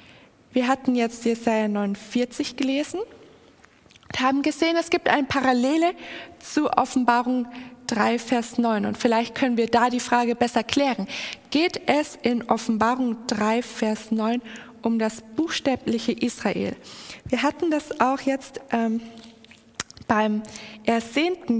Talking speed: 130 wpm